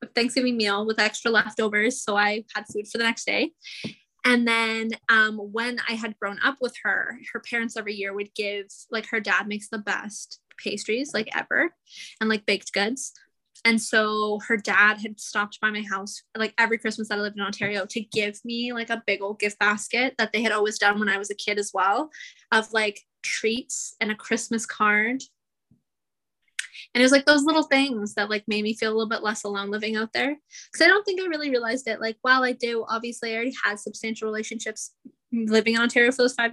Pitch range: 210-235 Hz